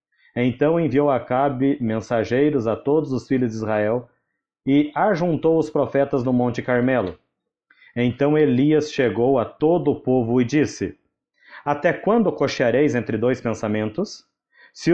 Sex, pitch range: male, 120-150 Hz